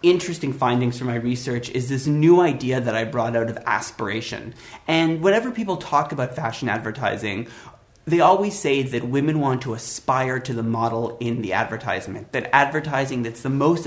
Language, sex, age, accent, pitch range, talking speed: English, male, 30-49, American, 120-160 Hz, 175 wpm